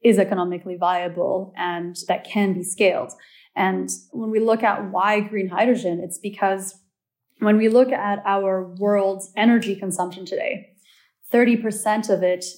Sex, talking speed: female, 145 wpm